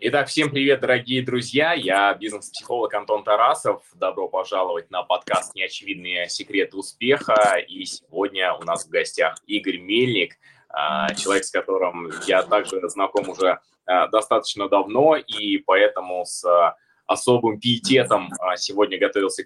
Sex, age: male, 20-39